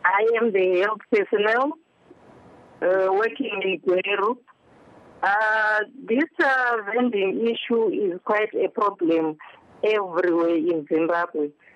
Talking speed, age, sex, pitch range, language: 105 wpm, 50-69, female, 175-220 Hz, English